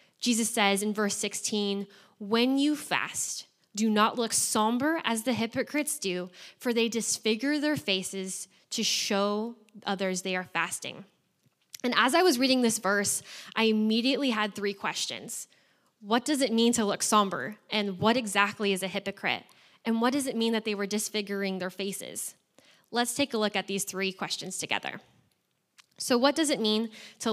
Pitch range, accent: 195-235 Hz, American